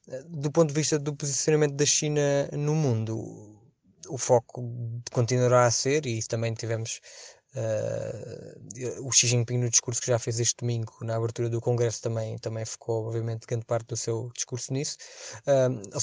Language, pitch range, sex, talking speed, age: Portuguese, 115-130 Hz, male, 160 wpm, 20-39